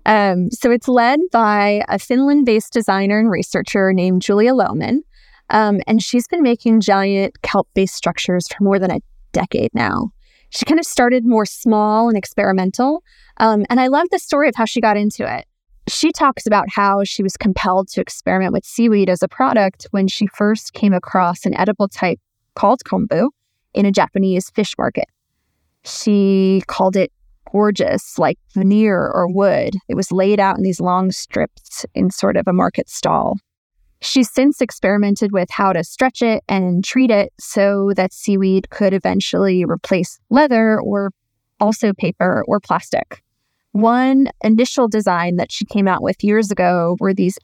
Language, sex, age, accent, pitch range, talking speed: English, female, 20-39, American, 190-230 Hz, 165 wpm